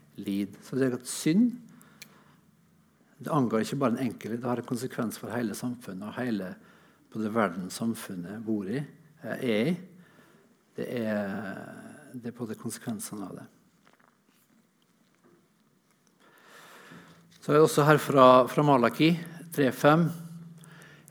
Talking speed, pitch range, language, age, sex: 130 wpm, 125-160 Hz, English, 60-79, male